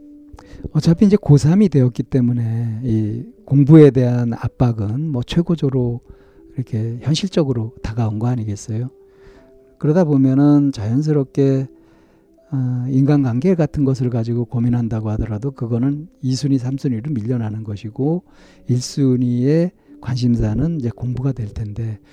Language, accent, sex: Korean, native, male